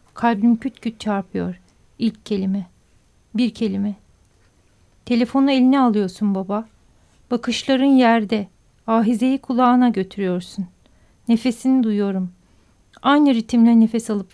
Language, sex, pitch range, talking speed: Turkish, female, 205-250 Hz, 95 wpm